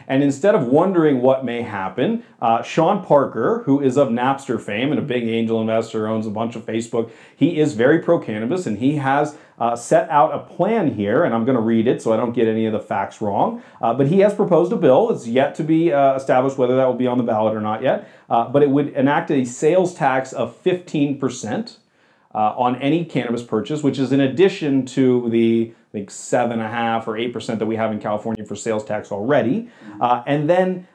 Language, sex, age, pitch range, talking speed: English, male, 40-59, 115-145 Hz, 225 wpm